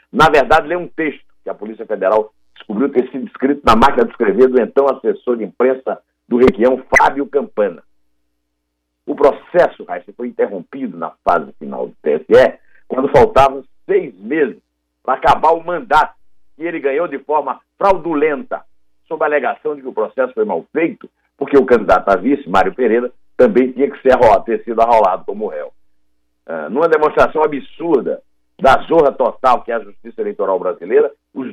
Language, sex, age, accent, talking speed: Portuguese, male, 60-79, Brazilian, 175 wpm